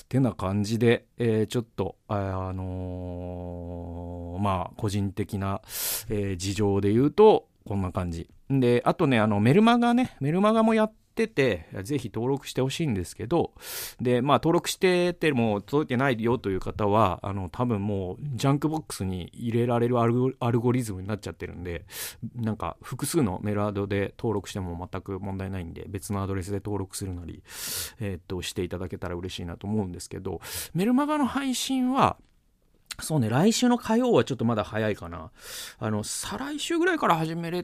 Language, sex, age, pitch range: Japanese, male, 40-59, 95-145 Hz